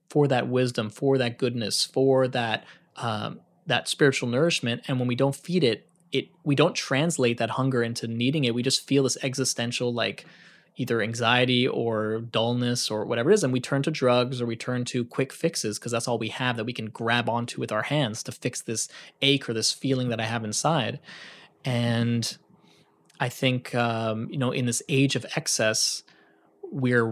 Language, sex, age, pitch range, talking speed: English, male, 20-39, 115-135 Hz, 195 wpm